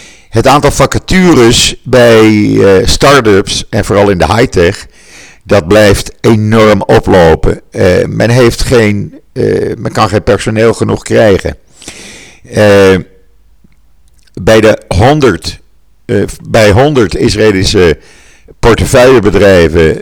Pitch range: 90-115 Hz